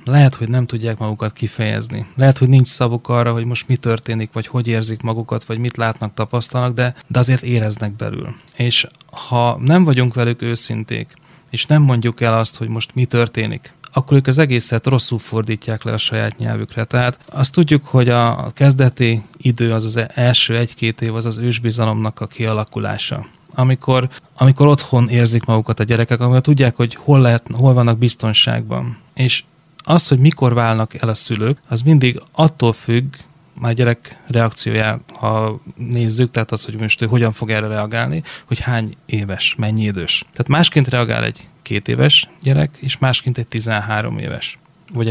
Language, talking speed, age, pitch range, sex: Hungarian, 170 wpm, 30-49, 115-130 Hz, male